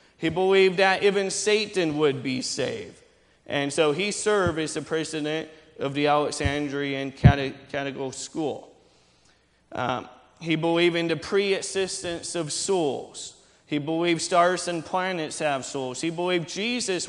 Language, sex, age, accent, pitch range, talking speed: English, male, 30-49, American, 150-185 Hz, 135 wpm